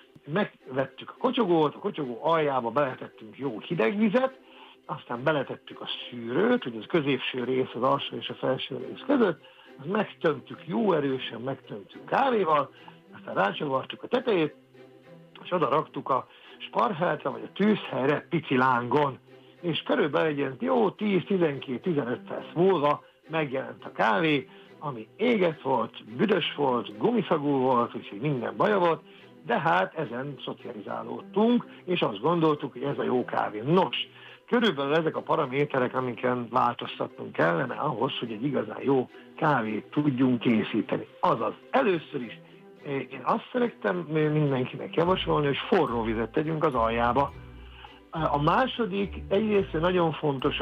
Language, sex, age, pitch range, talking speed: Hungarian, male, 60-79, 130-180 Hz, 130 wpm